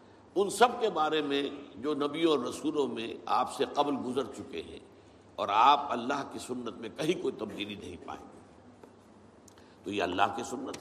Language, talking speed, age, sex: Urdu, 180 wpm, 60-79, male